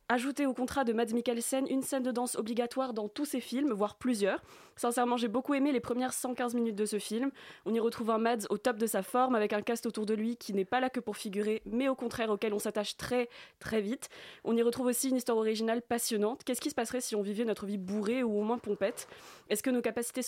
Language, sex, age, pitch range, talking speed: French, female, 20-39, 210-245 Hz, 255 wpm